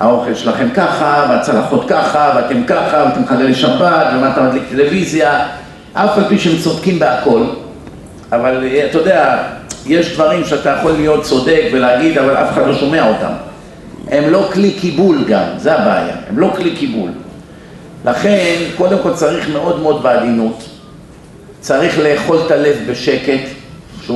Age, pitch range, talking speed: 50-69, 135-200 Hz, 145 wpm